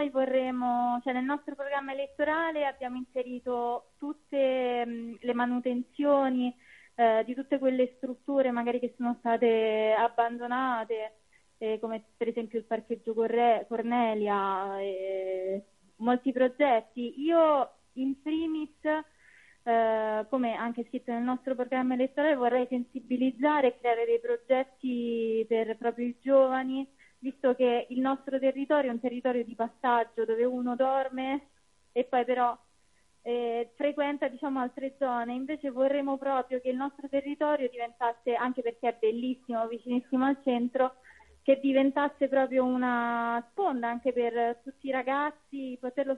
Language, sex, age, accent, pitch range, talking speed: Italian, female, 20-39, native, 235-270 Hz, 130 wpm